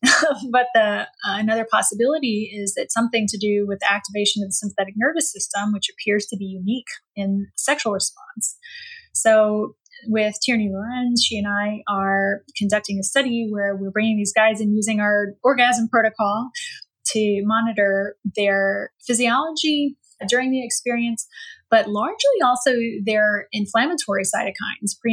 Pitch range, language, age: 205-265 Hz, English, 10-29